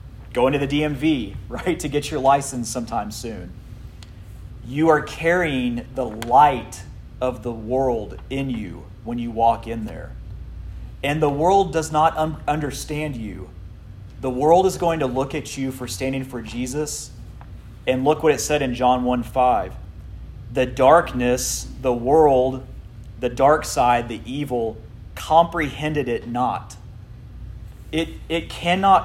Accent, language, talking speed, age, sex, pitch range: American, English, 145 wpm, 30-49, male, 110-140 Hz